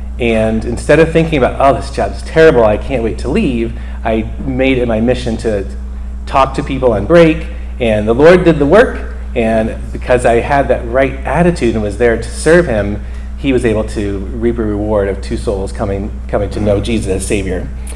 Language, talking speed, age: English, 205 wpm, 30-49